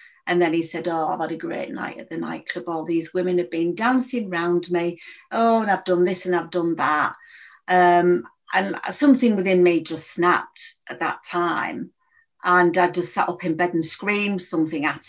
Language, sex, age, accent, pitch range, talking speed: English, female, 30-49, British, 175-215 Hz, 205 wpm